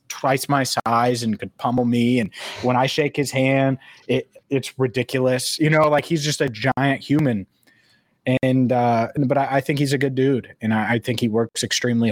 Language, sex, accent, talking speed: English, male, American, 205 wpm